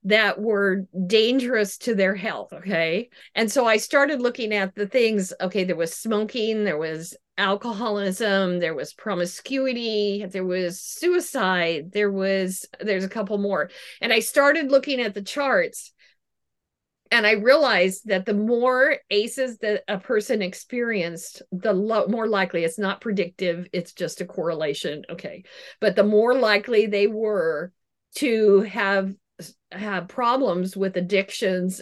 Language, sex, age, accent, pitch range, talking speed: English, female, 50-69, American, 190-245 Hz, 145 wpm